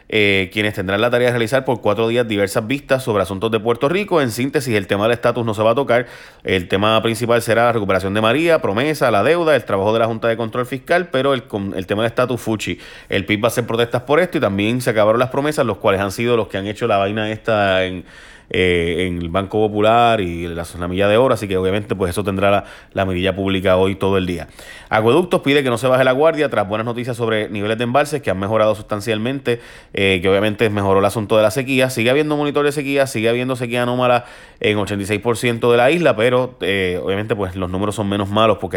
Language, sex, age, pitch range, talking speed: Spanish, male, 30-49, 95-125 Hz, 245 wpm